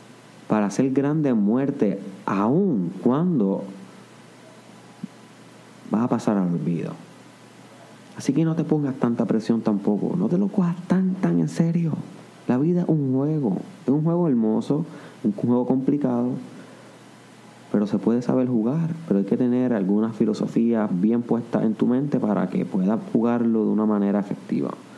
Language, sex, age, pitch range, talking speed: Spanish, male, 30-49, 120-170 Hz, 155 wpm